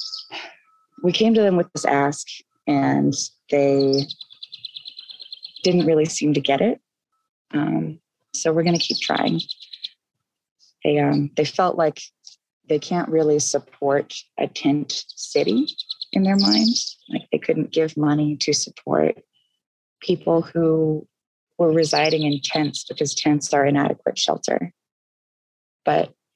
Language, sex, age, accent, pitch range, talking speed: English, female, 20-39, American, 140-170 Hz, 125 wpm